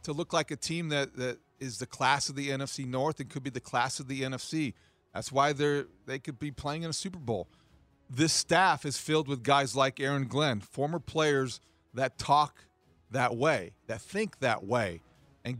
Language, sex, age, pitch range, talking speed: English, male, 40-59, 115-145 Hz, 205 wpm